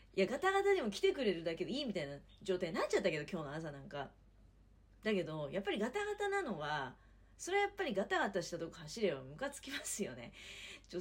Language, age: Japanese, 40-59